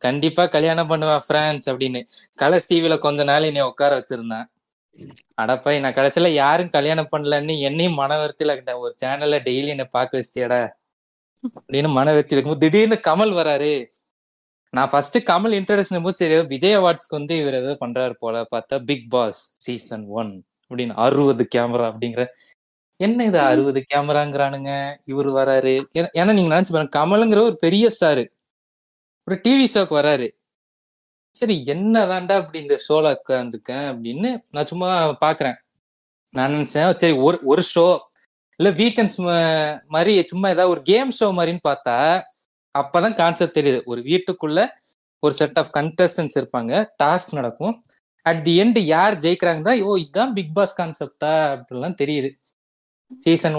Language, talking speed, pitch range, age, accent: Tamil, 140 wpm, 135-175 Hz, 20-39, native